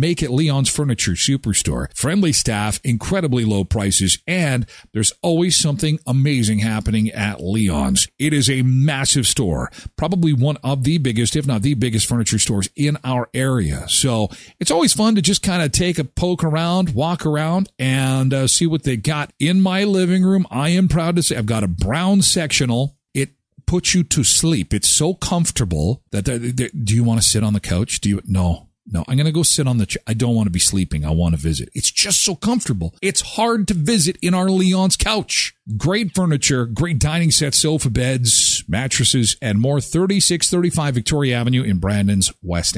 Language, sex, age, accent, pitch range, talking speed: English, male, 40-59, American, 115-175 Hz, 195 wpm